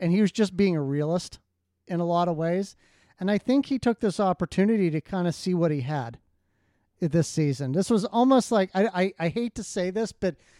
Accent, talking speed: American, 225 wpm